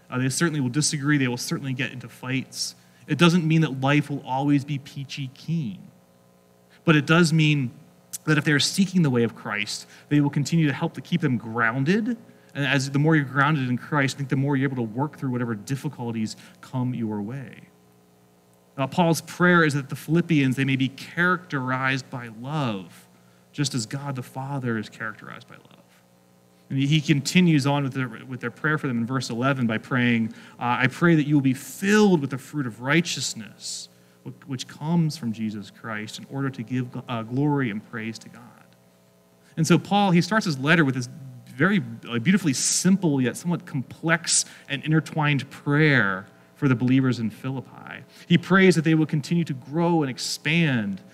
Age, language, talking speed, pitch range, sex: 30-49, English, 190 wpm, 115-155 Hz, male